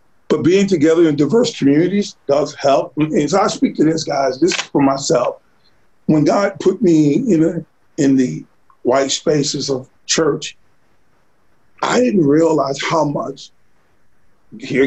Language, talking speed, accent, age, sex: English, 145 wpm, American, 40-59, male